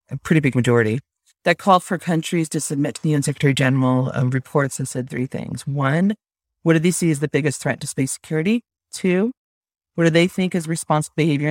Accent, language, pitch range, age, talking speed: American, English, 135-175 Hz, 40-59, 215 wpm